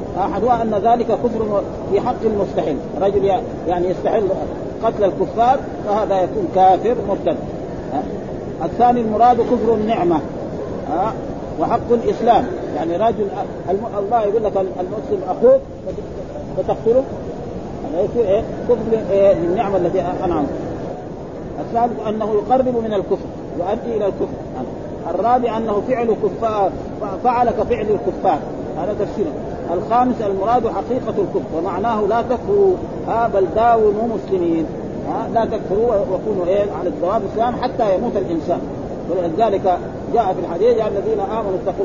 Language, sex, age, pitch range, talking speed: Arabic, male, 40-59, 195-240 Hz, 125 wpm